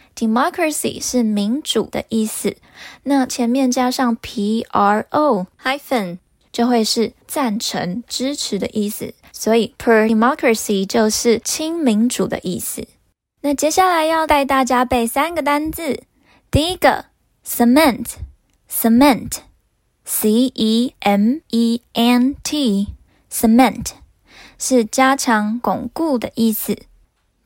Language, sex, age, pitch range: Chinese, female, 10-29, 220-270 Hz